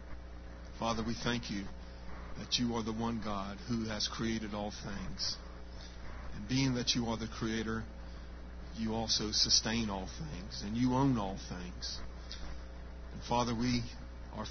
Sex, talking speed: male, 150 wpm